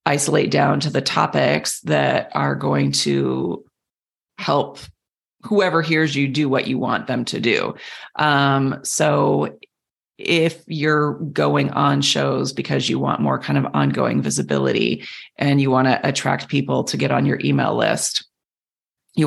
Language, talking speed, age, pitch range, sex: English, 150 wpm, 30-49, 125-155 Hz, female